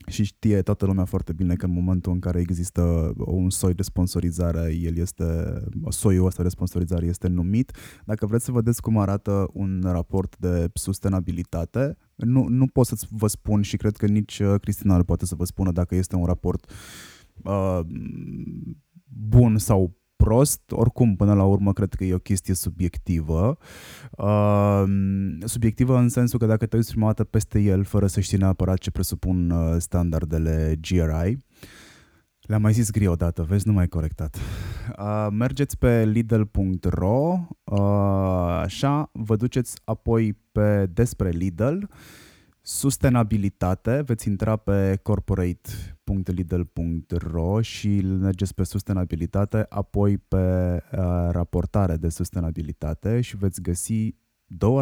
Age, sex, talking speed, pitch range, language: 20-39, male, 140 wpm, 90-110 Hz, Romanian